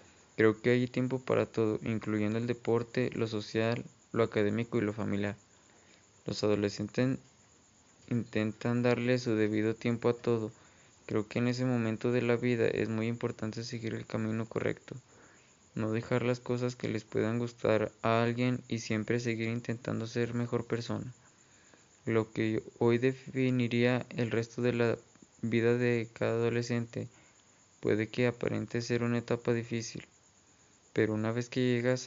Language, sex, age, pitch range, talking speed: Spanish, male, 20-39, 110-120 Hz, 150 wpm